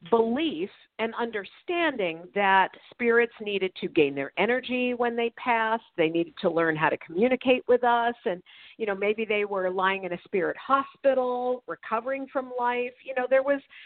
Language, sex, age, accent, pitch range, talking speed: English, female, 50-69, American, 205-255 Hz, 175 wpm